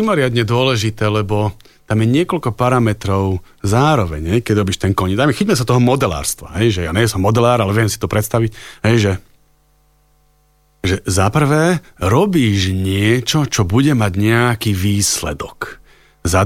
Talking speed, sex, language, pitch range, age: 150 wpm, male, Slovak, 105-135 Hz, 40-59